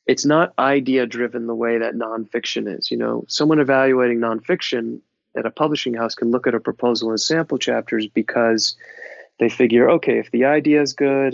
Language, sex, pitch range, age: English, male, 115-130 Hz, 30-49